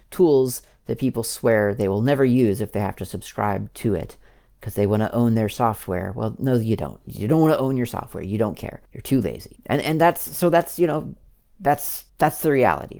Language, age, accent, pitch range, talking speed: English, 40-59, American, 110-145 Hz, 230 wpm